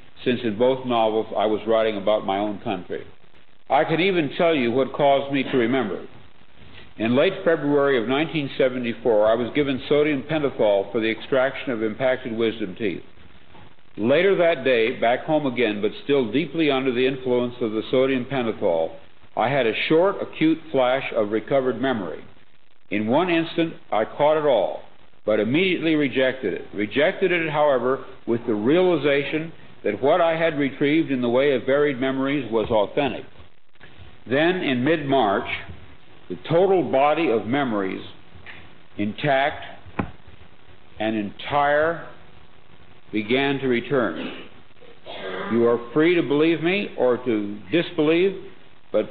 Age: 60-79